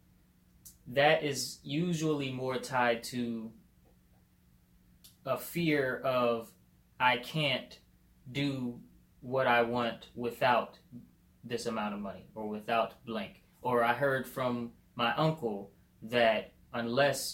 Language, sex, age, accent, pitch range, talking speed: English, male, 20-39, American, 105-125 Hz, 105 wpm